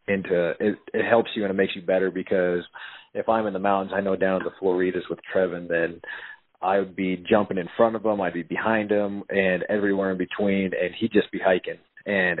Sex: male